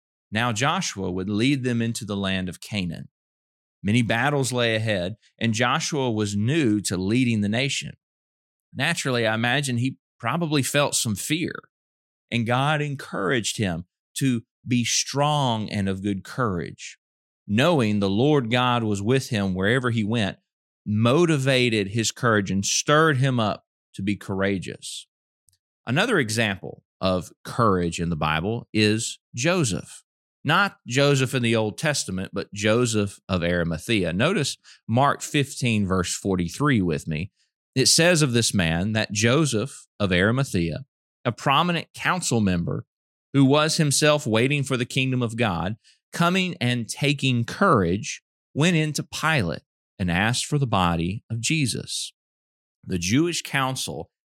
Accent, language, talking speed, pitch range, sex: American, English, 140 wpm, 95-135 Hz, male